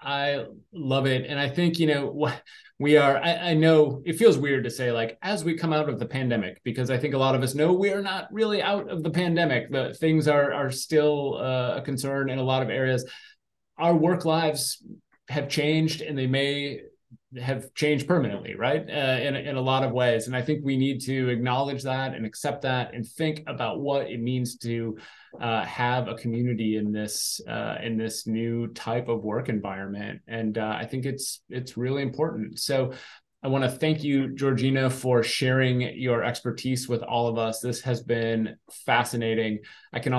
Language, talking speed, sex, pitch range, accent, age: English, 200 wpm, male, 115-145 Hz, American, 30-49